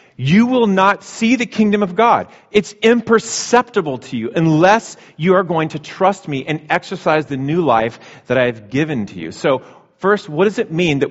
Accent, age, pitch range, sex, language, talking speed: American, 40-59, 130-180 Hz, male, English, 200 wpm